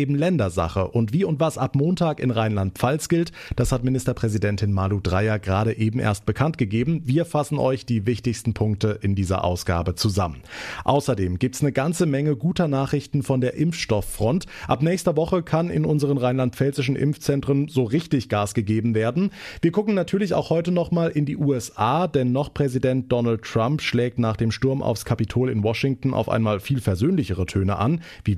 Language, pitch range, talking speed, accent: German, 110-150 Hz, 175 wpm, German